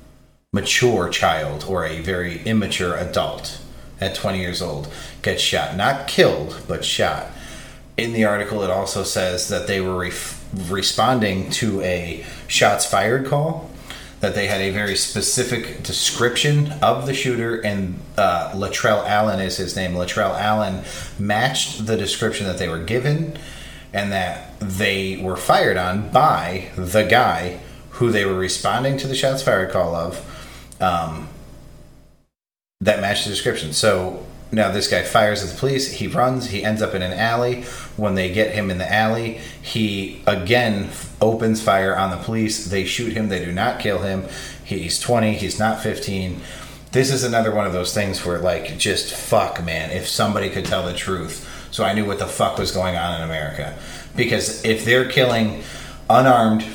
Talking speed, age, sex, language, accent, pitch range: 170 wpm, 30-49, male, English, American, 95-115 Hz